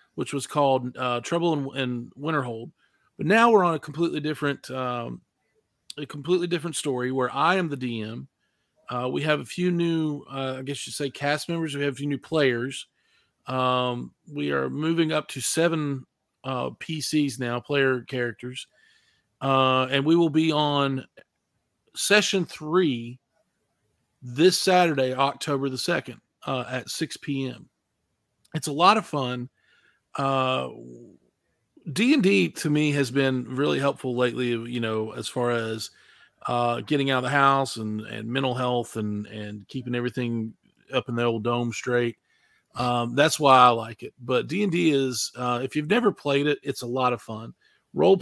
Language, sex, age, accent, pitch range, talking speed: English, male, 40-59, American, 120-150 Hz, 170 wpm